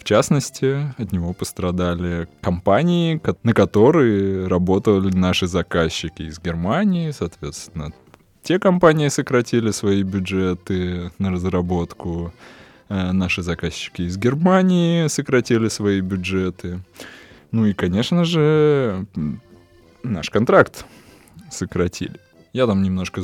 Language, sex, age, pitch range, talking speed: Russian, male, 20-39, 90-115 Hz, 100 wpm